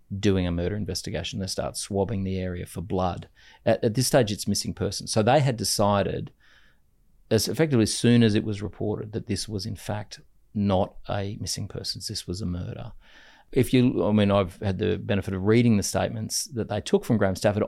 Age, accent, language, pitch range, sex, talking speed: 30-49, Australian, English, 95-115 Hz, male, 205 wpm